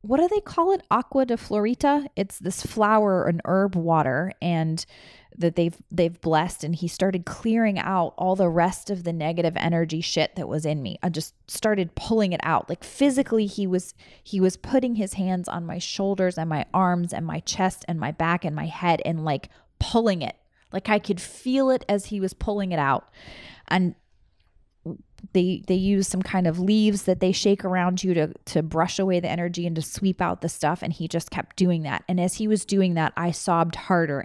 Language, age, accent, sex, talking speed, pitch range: English, 20-39, American, female, 210 wpm, 165-200 Hz